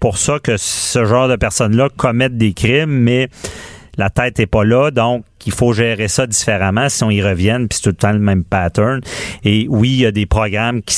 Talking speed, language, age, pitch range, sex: 230 wpm, French, 40-59, 100-120 Hz, male